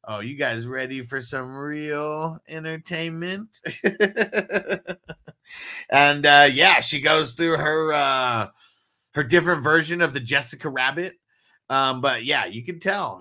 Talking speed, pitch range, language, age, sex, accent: 130 wpm, 115-155 Hz, English, 30-49, male, American